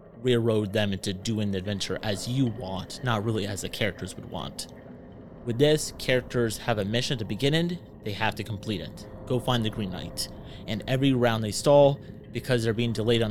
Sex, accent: male, American